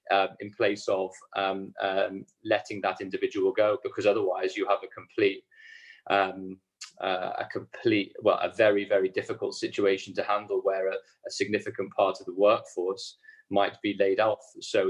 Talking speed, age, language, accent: 165 wpm, 30-49, English, British